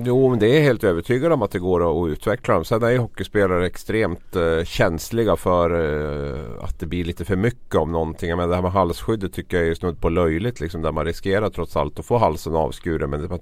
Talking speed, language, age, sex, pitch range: 235 wpm, Swedish, 30-49, male, 85-110 Hz